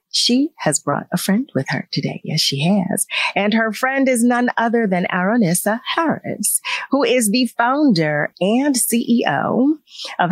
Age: 40-59